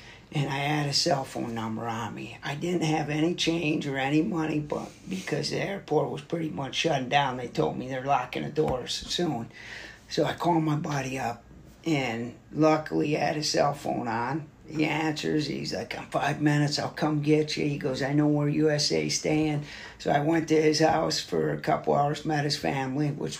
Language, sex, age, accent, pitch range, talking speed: English, male, 40-59, American, 135-165 Hz, 205 wpm